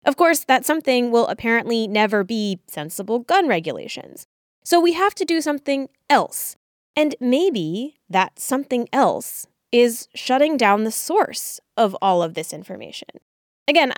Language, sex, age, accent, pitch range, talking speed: English, female, 10-29, American, 190-285 Hz, 145 wpm